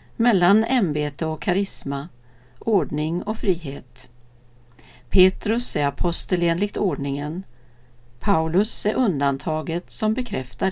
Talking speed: 95 wpm